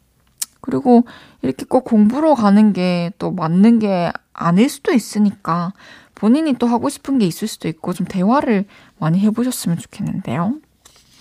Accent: native